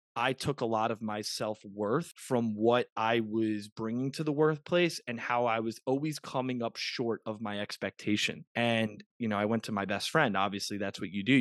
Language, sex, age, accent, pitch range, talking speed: English, male, 20-39, American, 105-135 Hz, 215 wpm